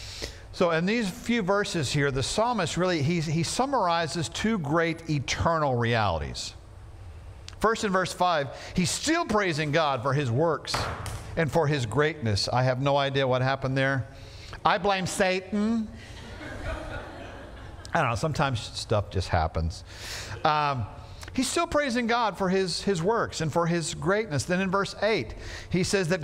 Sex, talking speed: male, 155 wpm